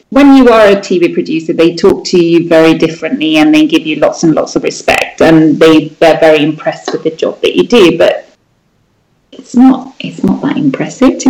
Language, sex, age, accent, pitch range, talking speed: English, female, 30-49, British, 175-260 Hz, 210 wpm